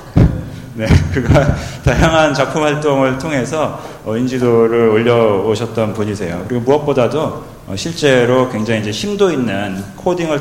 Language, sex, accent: Korean, male, native